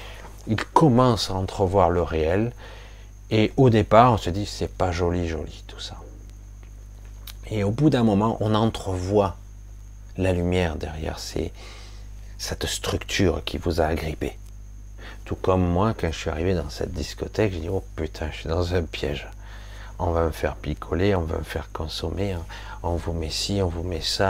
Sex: male